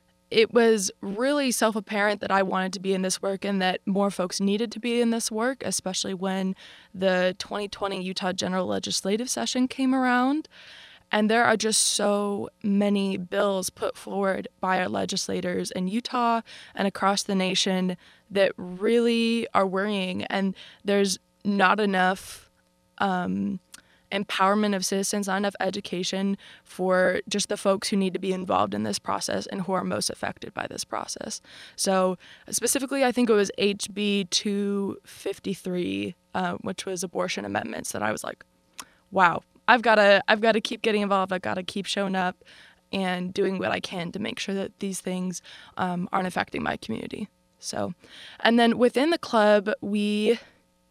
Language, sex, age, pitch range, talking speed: English, female, 20-39, 185-220 Hz, 165 wpm